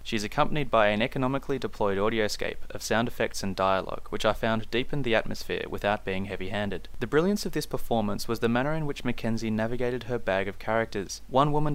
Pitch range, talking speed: 95-120 Hz, 210 wpm